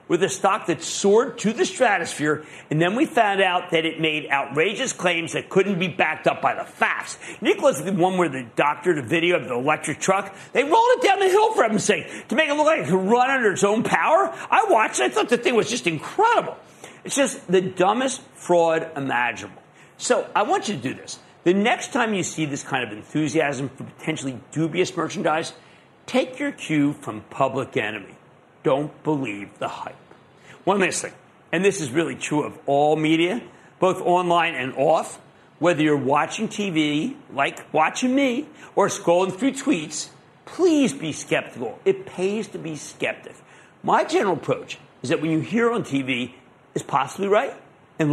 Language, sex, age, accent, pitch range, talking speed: English, male, 50-69, American, 145-205 Hz, 190 wpm